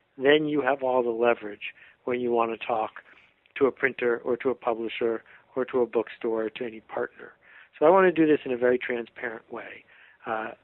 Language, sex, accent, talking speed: English, male, American, 215 wpm